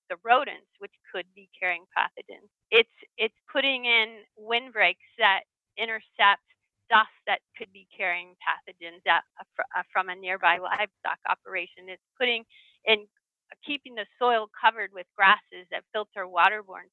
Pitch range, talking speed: 185-230 Hz, 150 wpm